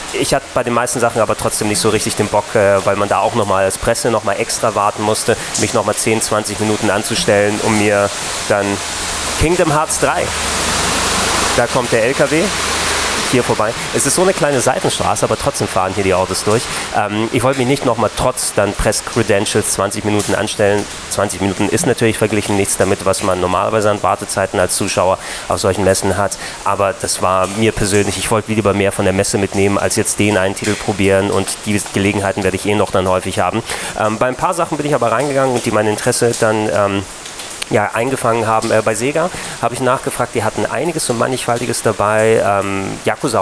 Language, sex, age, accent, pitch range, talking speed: German, male, 20-39, German, 100-115 Hz, 205 wpm